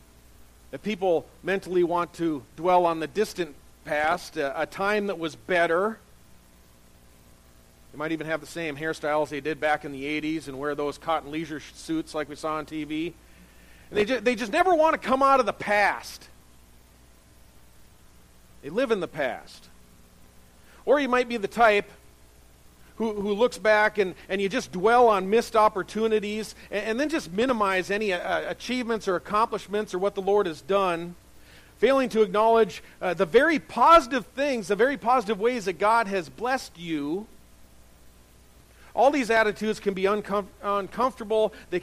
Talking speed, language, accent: 165 wpm, English, American